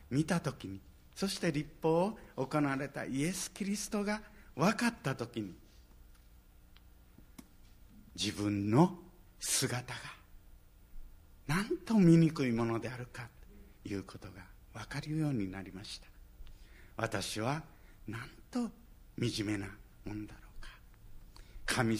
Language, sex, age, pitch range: Japanese, male, 60-79, 100-170 Hz